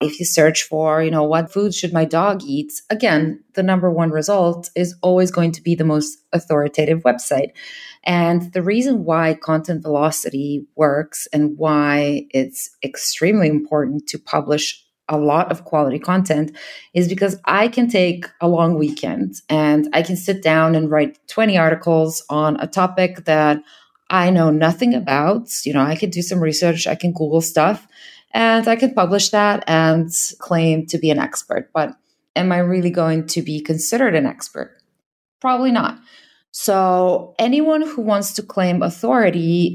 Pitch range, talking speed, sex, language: 155-190 Hz, 170 wpm, female, English